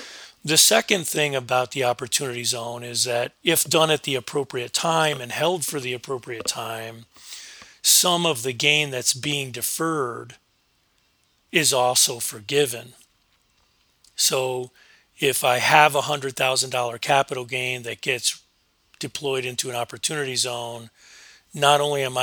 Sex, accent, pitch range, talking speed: male, American, 120-145 Hz, 130 wpm